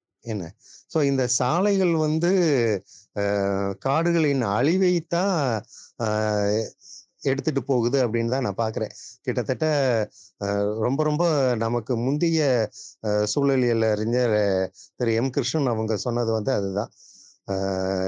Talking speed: 95 wpm